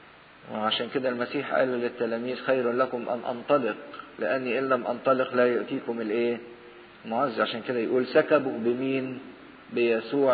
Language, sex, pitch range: English, male, 125-165 Hz